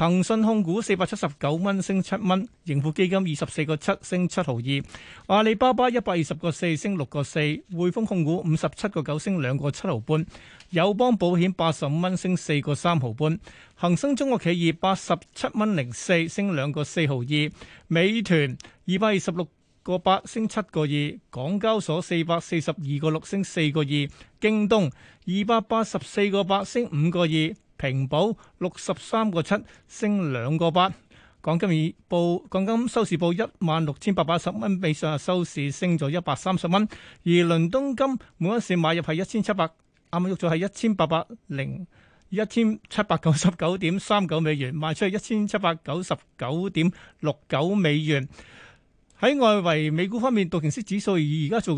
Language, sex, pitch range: Chinese, male, 155-200 Hz